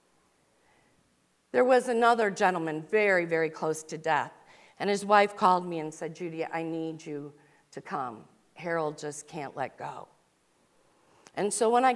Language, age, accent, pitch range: English, 50-69, American, 160-220 Hz